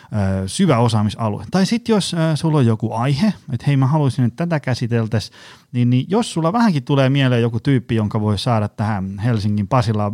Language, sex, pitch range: Finnish, male, 100-130 Hz